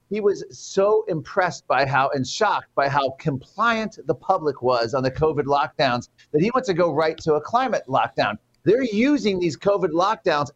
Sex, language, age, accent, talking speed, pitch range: male, English, 40-59, American, 190 wpm, 150-200 Hz